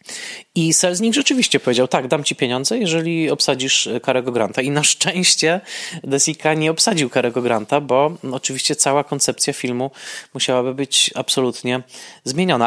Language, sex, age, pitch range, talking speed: Polish, male, 20-39, 115-145 Hz, 135 wpm